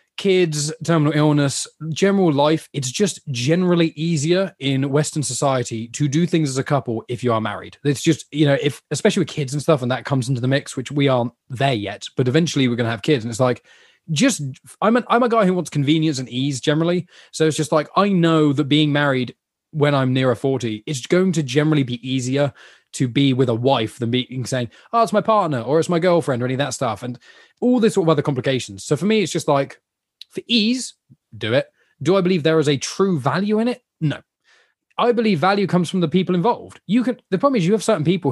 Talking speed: 235 wpm